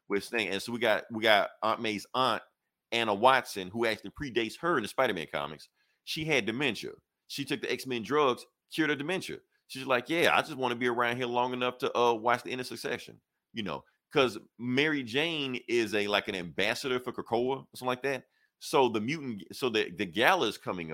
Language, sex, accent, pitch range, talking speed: English, male, American, 105-130 Hz, 220 wpm